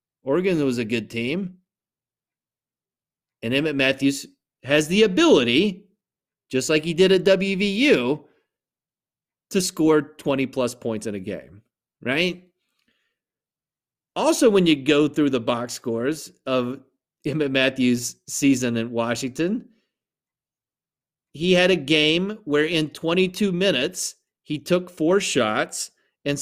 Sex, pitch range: male, 130-180 Hz